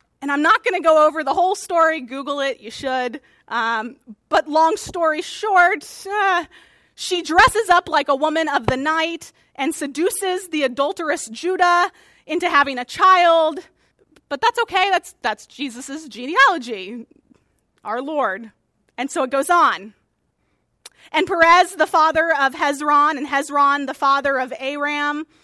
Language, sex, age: English, female, 30-49